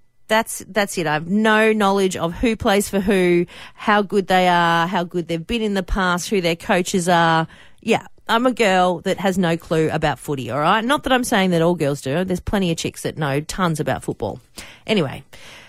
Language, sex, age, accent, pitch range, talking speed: English, female, 40-59, Australian, 175-225 Hz, 220 wpm